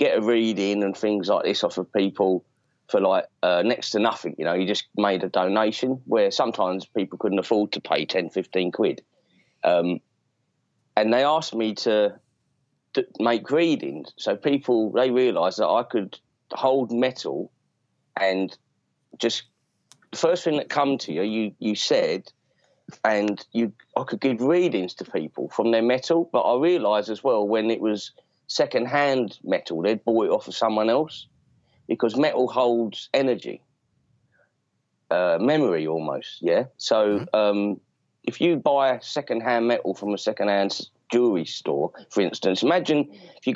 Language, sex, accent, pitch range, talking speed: English, male, British, 100-125 Hz, 160 wpm